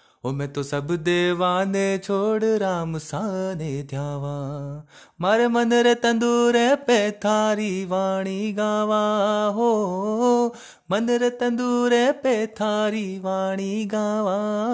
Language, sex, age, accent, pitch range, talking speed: Hindi, male, 30-49, native, 130-190 Hz, 95 wpm